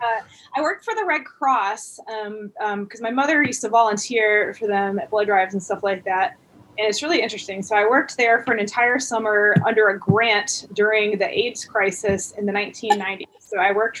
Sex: female